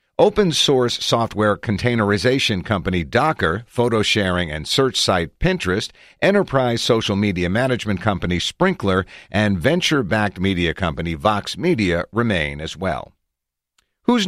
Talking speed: 110 wpm